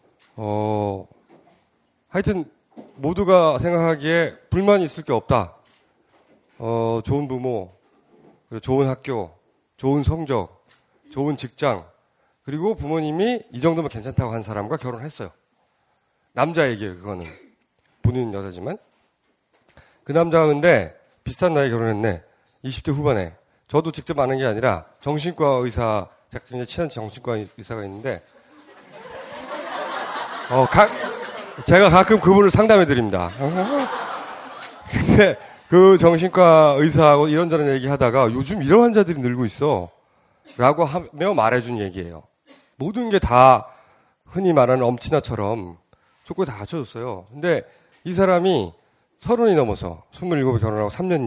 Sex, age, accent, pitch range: male, 30-49, native, 115-165 Hz